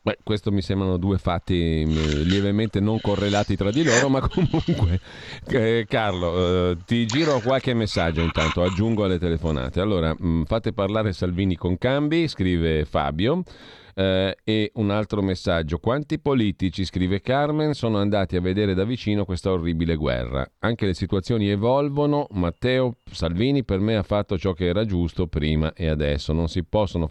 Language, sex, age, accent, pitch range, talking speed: Italian, male, 40-59, native, 90-115 Hz, 155 wpm